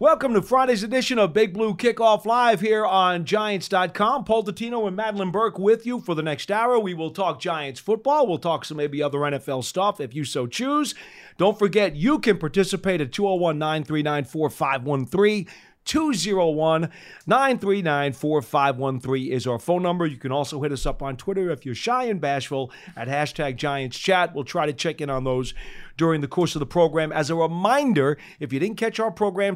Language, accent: English, American